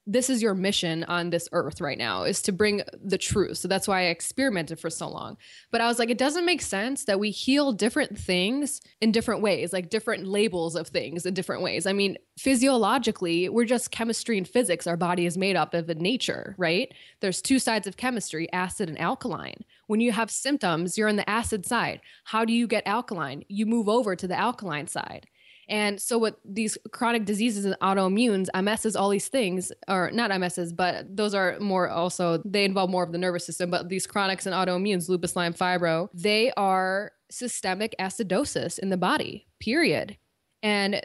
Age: 20-39